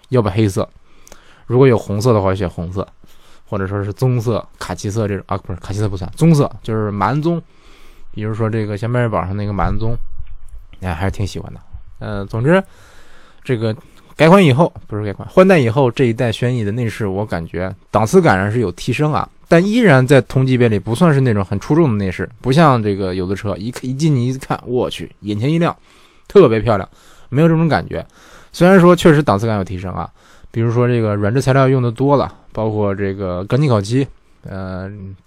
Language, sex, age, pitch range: Chinese, male, 20-39, 100-135 Hz